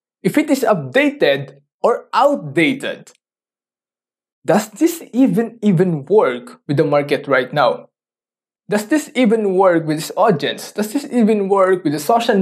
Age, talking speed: 20-39, 145 wpm